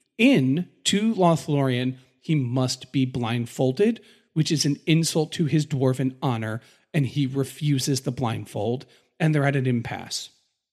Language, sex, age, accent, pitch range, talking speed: English, male, 40-59, American, 135-195 Hz, 140 wpm